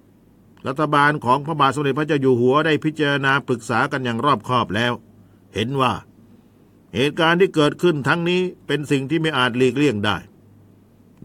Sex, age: male, 60-79